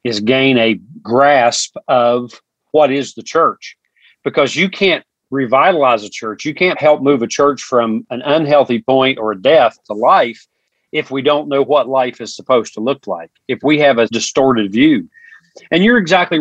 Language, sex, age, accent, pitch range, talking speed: English, male, 40-59, American, 120-155 Hz, 185 wpm